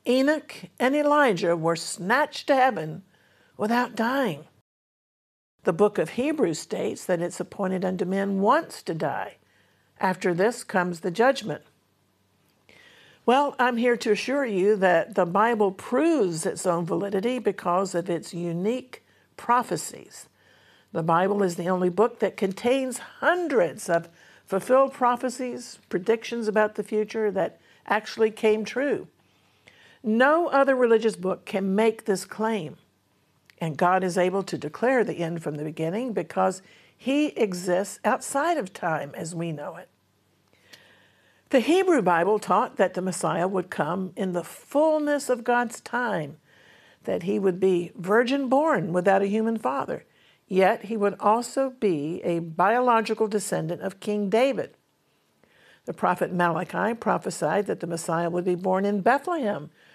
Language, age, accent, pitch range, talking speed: English, 60-79, American, 180-245 Hz, 140 wpm